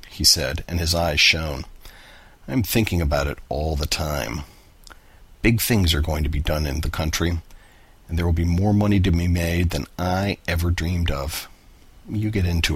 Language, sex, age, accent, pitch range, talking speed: English, male, 50-69, American, 80-95 Hz, 190 wpm